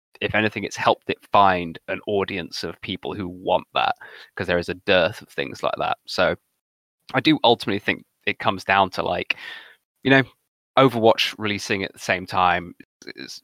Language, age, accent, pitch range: English, 20-39, British, 90-100 Hz